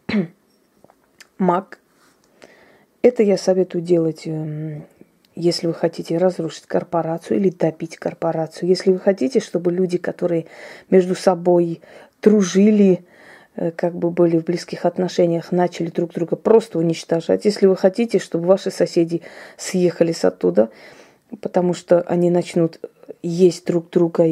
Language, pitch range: Russian, 170-195 Hz